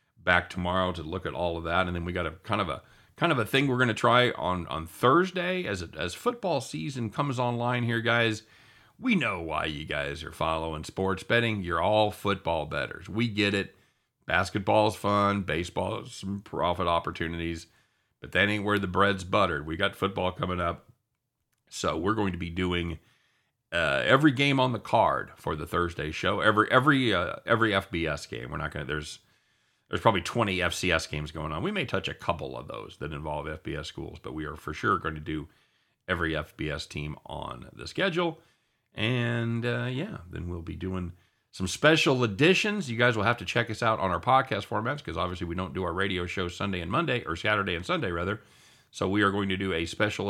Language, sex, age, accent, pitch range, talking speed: English, male, 40-59, American, 85-115 Hz, 210 wpm